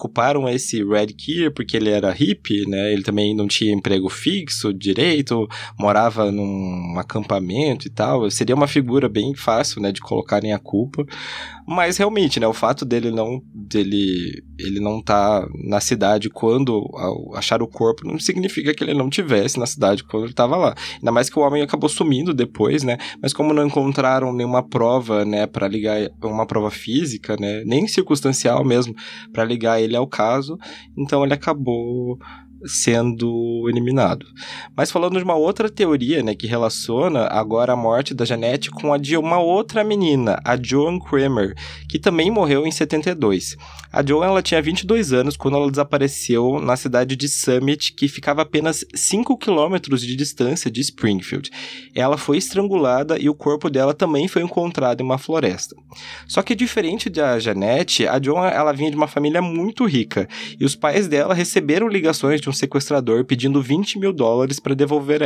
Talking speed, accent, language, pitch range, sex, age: 170 wpm, Brazilian, Portuguese, 110-150 Hz, male, 20-39